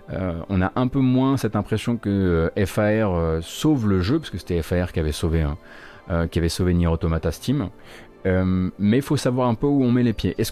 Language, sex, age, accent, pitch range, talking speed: French, male, 30-49, French, 90-120 Hz, 245 wpm